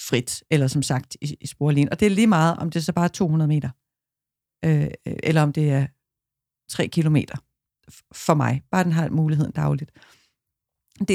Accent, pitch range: native, 145-185 Hz